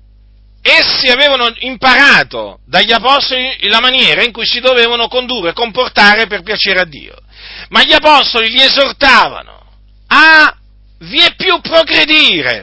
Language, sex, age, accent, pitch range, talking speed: Italian, male, 50-69, native, 165-255 Hz, 130 wpm